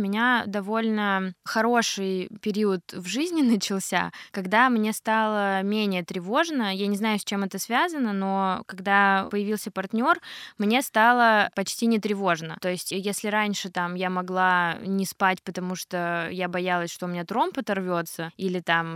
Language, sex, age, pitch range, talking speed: Russian, female, 20-39, 185-215 Hz, 155 wpm